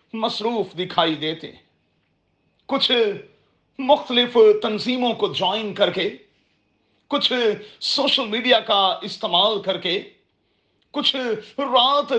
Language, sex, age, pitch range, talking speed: Urdu, male, 40-59, 190-250 Hz, 95 wpm